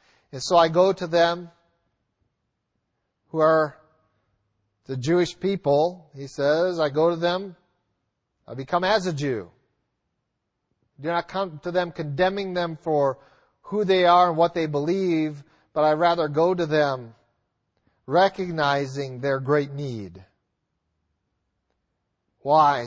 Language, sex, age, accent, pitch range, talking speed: English, male, 40-59, American, 130-170 Hz, 125 wpm